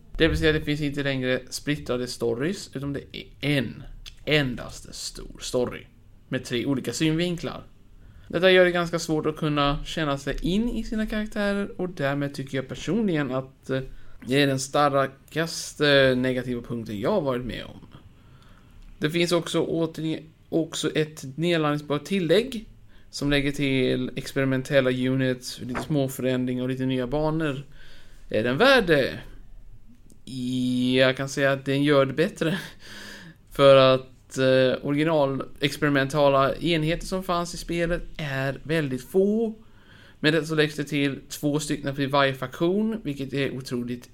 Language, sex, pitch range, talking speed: Swedish, male, 130-165 Hz, 145 wpm